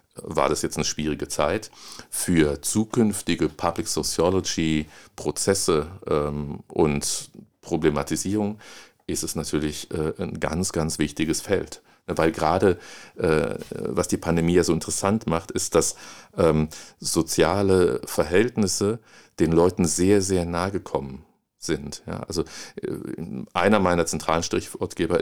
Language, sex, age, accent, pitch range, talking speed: German, male, 50-69, German, 80-95 Hz, 120 wpm